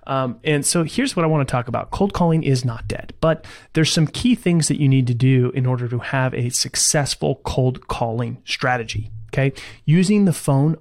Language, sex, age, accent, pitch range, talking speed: English, male, 30-49, American, 125-160 Hz, 210 wpm